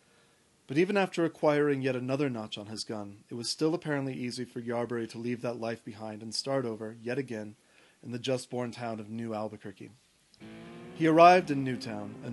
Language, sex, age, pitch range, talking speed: English, male, 30-49, 115-140 Hz, 190 wpm